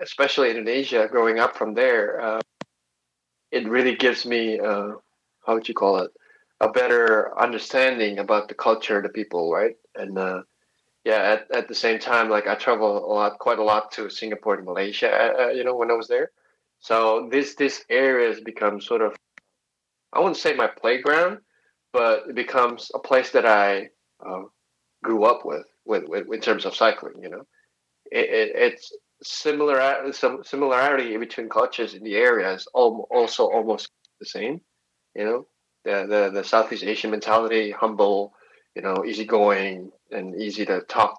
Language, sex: English, male